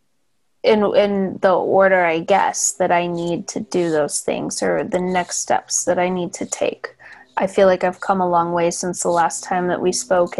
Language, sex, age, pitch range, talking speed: English, female, 20-39, 175-195 Hz, 215 wpm